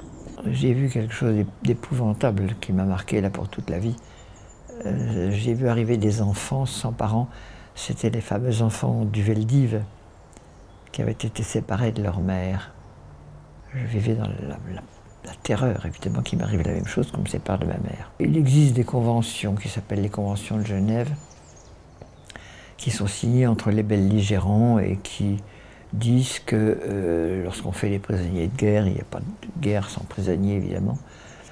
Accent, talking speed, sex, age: French, 170 wpm, male, 60-79